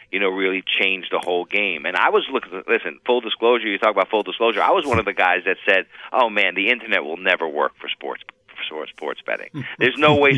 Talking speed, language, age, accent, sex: 250 wpm, English, 40-59, American, male